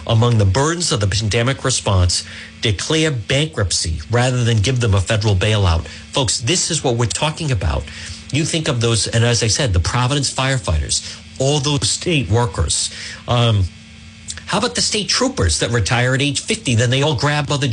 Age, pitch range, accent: 50-69, 100-135 Hz, American